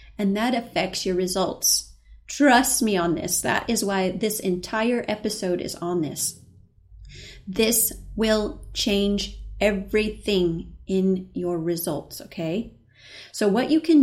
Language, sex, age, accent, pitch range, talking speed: English, female, 30-49, American, 175-235 Hz, 130 wpm